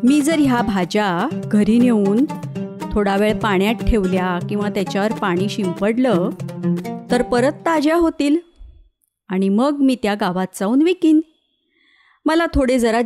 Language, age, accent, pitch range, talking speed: Marathi, 30-49, native, 200-280 Hz, 130 wpm